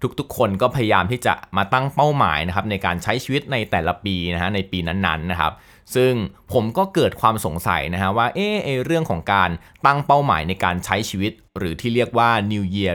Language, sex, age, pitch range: Thai, male, 20-39, 95-130 Hz